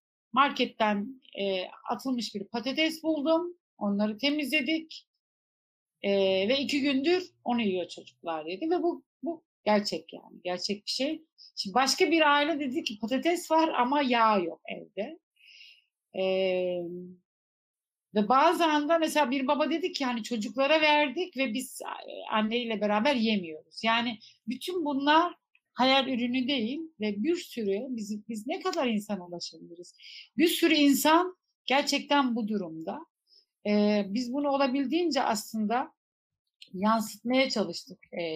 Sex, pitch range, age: female, 210-290 Hz, 60-79